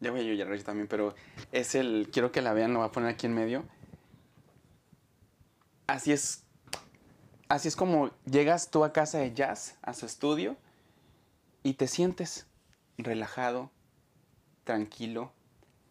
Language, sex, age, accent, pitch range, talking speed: Spanish, male, 30-49, Mexican, 115-150 Hz, 145 wpm